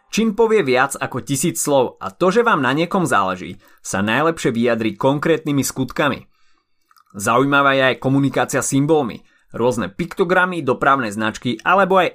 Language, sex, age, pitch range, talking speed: Slovak, male, 30-49, 115-165 Hz, 145 wpm